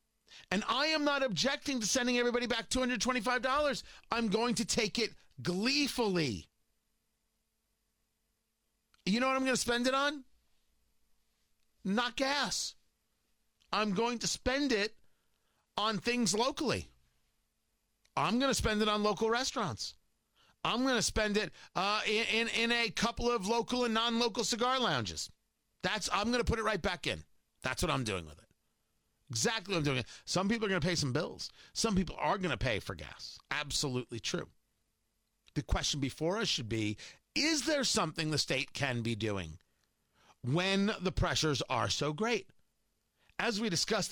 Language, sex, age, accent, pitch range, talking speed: English, male, 40-59, American, 150-240 Hz, 165 wpm